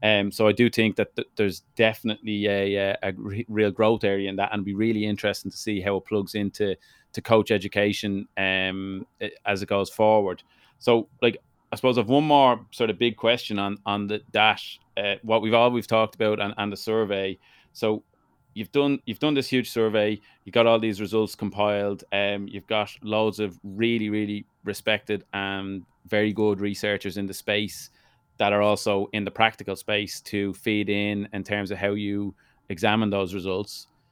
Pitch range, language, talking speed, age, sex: 100-110 Hz, English, 190 wpm, 30-49, male